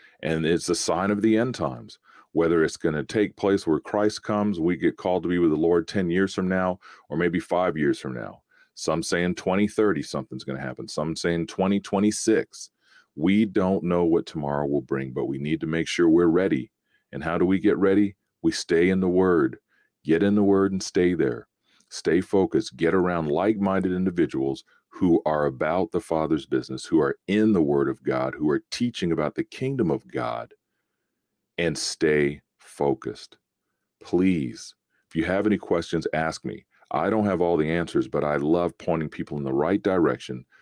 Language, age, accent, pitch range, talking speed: English, 40-59, American, 80-100 Hz, 195 wpm